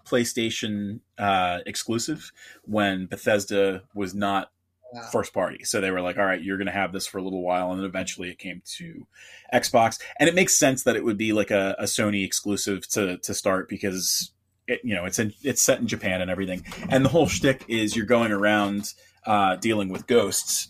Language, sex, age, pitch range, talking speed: English, male, 30-49, 95-110 Hz, 200 wpm